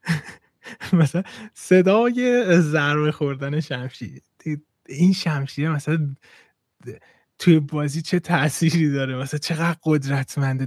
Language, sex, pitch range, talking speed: Persian, male, 135-200 Hz, 90 wpm